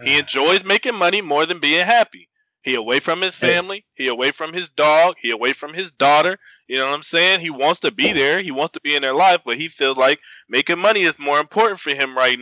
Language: English